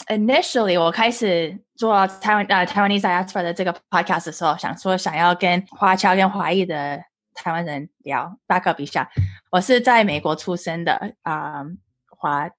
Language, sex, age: English, female, 20-39